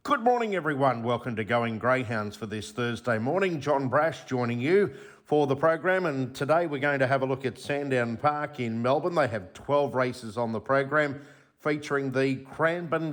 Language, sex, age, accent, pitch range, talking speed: English, male, 50-69, Australian, 115-145 Hz, 185 wpm